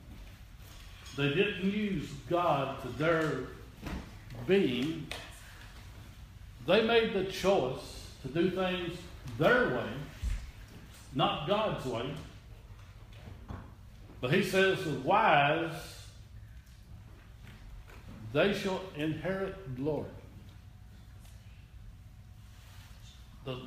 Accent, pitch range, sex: American, 105-155 Hz, male